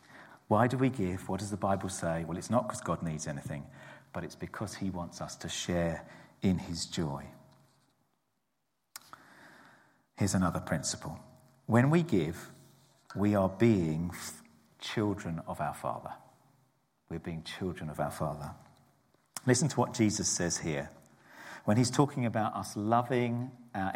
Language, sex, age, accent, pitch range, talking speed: English, male, 50-69, British, 85-120 Hz, 150 wpm